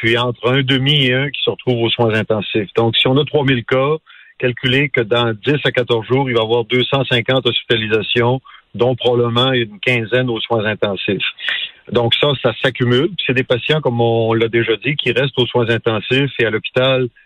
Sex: male